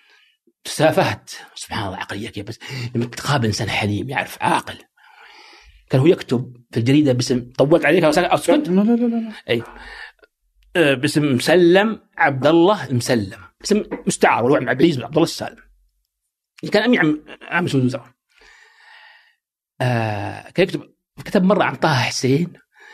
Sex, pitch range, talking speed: male, 125-215 Hz, 125 wpm